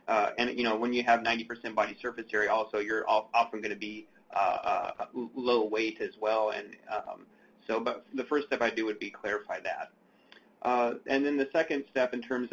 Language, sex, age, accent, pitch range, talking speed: English, male, 30-49, American, 115-125 Hz, 200 wpm